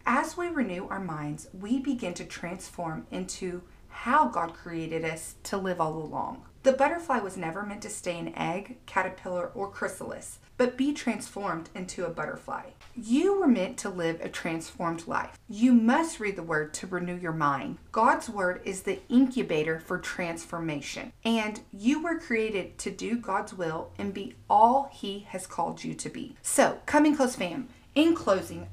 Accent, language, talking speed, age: American, English, 175 wpm, 40-59